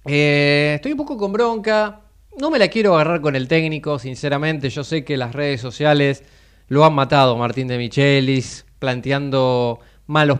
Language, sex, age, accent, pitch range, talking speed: Spanish, male, 20-39, Argentinian, 135-185 Hz, 165 wpm